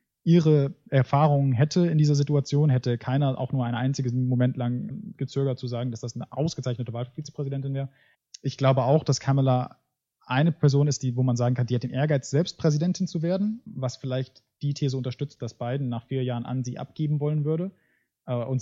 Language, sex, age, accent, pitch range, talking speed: German, male, 20-39, German, 125-150 Hz, 195 wpm